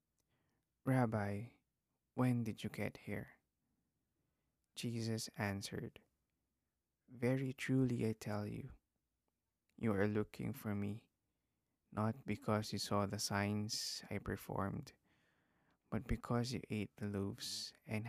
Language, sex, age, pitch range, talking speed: English, male, 20-39, 105-125 Hz, 110 wpm